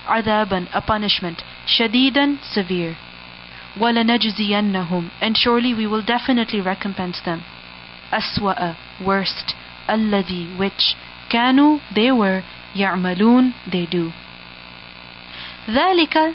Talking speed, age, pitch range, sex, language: 90 wpm, 30-49, 180-225 Hz, female, English